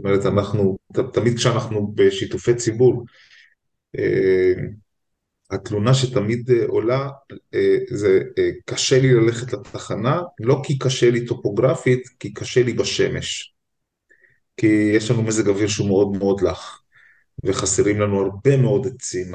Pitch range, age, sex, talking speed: 105-135 Hz, 20-39, male, 120 wpm